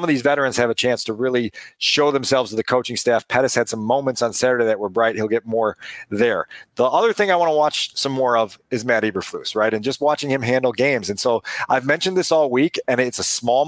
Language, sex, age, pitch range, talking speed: English, male, 40-59, 125-155 Hz, 255 wpm